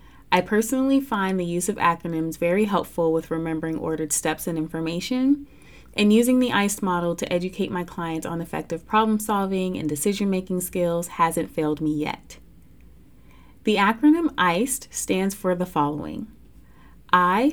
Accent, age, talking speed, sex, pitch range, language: American, 30-49, 145 wpm, female, 160-215 Hz, English